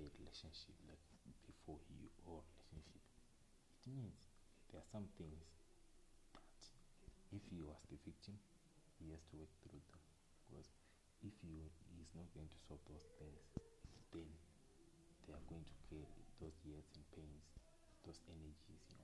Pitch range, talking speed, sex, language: 75-90 Hz, 150 wpm, male, English